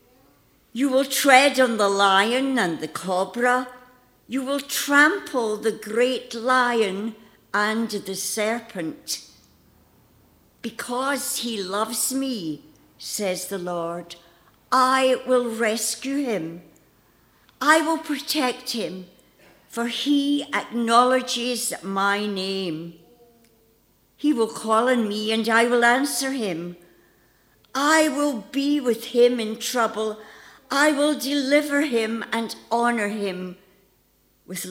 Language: English